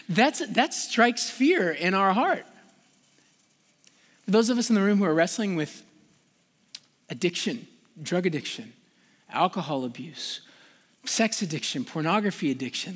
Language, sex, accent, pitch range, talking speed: English, male, American, 155-235 Hz, 115 wpm